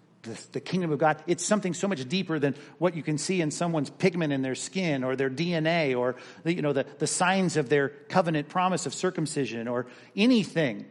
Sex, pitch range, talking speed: male, 145-185 Hz, 205 wpm